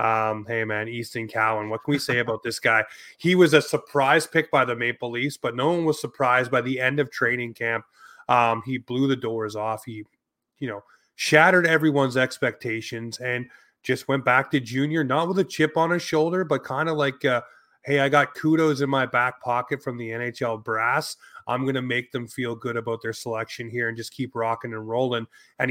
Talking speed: 210 wpm